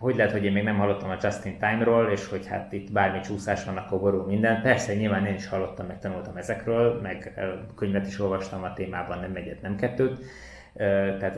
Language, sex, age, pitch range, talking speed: Hungarian, male, 20-39, 95-115 Hz, 195 wpm